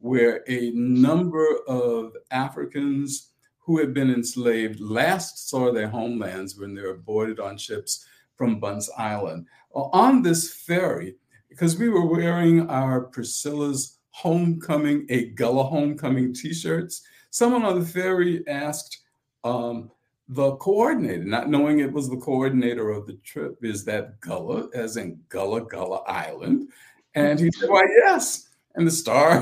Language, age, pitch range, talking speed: English, 50-69, 125-165 Hz, 140 wpm